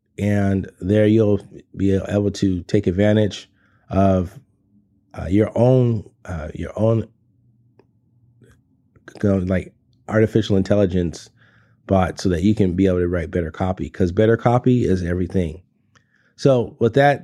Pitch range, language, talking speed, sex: 95-115 Hz, English, 135 wpm, male